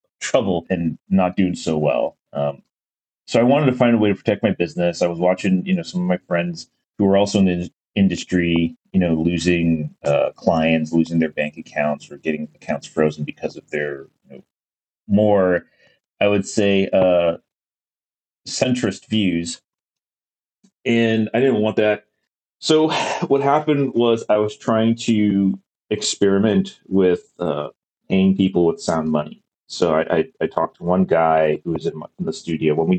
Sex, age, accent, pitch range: male, 30-49, American, 85-110 Hz